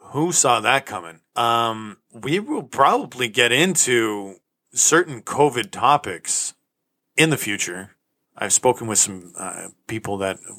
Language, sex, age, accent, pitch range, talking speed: English, male, 40-59, American, 100-130 Hz, 130 wpm